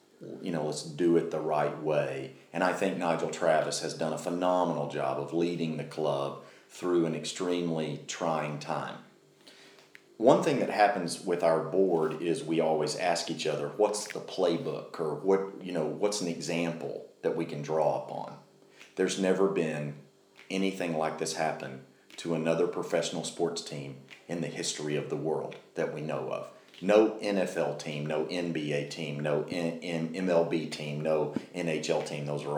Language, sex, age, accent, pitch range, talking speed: English, male, 40-59, American, 75-85 Hz, 170 wpm